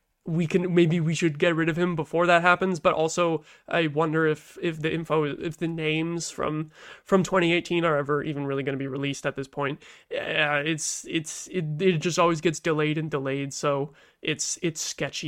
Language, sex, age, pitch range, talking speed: English, male, 20-39, 155-185 Hz, 205 wpm